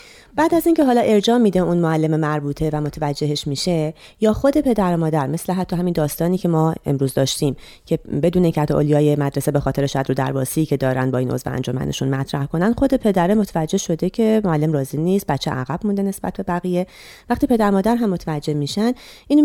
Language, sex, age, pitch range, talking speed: Persian, female, 30-49, 145-200 Hz, 200 wpm